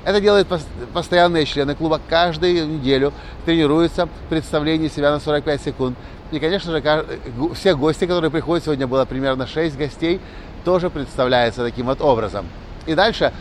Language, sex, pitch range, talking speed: Russian, male, 125-170 Hz, 150 wpm